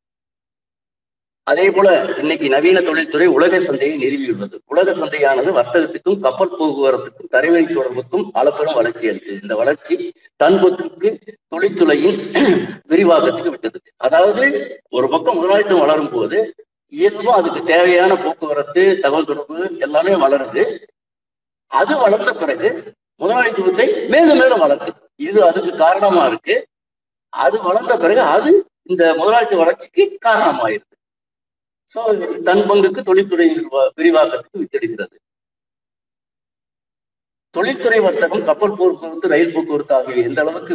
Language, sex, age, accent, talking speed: Tamil, male, 50-69, native, 105 wpm